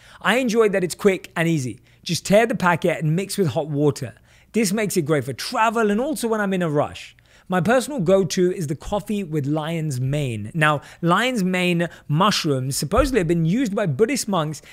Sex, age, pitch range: male, 30-49, 150-205 Hz